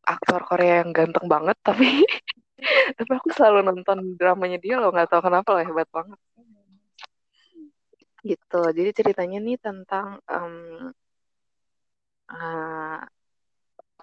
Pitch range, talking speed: 165-195 Hz, 110 wpm